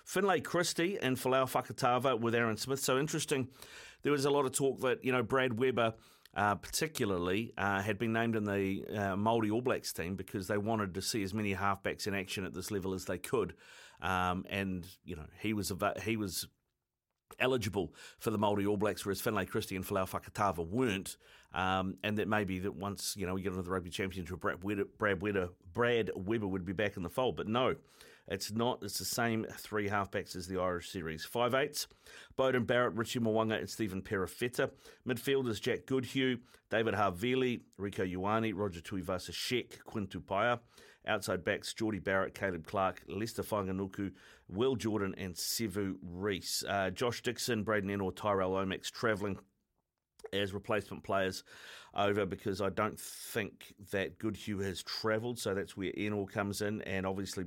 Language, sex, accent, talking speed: English, male, Australian, 180 wpm